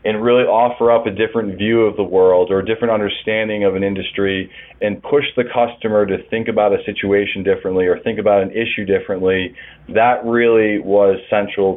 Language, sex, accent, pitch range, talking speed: English, male, American, 95-115 Hz, 190 wpm